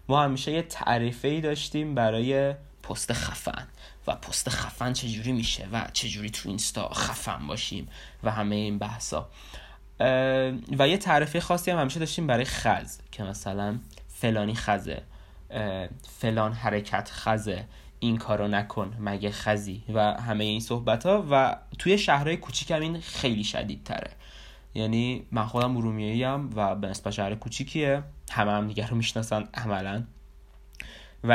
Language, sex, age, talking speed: Persian, male, 20-39, 140 wpm